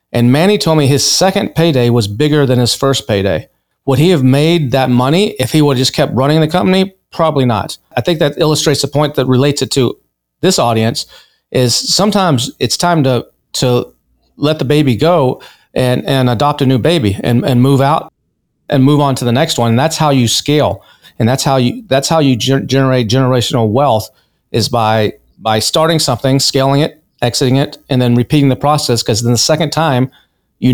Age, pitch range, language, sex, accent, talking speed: 40-59, 125-150 Hz, English, male, American, 205 wpm